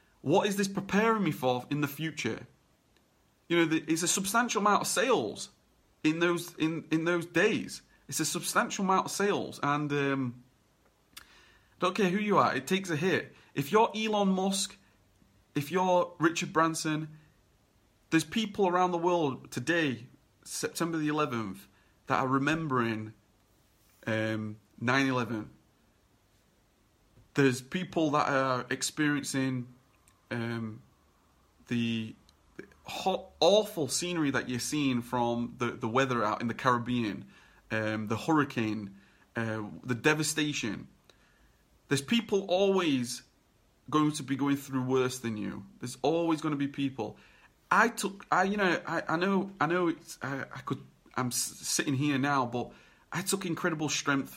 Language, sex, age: English, male, 30-49